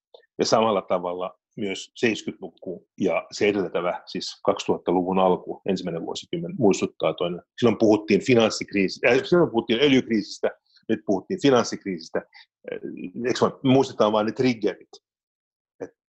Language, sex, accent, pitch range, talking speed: Finnish, male, native, 95-130 Hz, 110 wpm